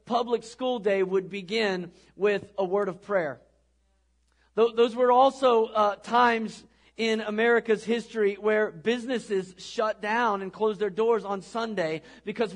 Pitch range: 170-215 Hz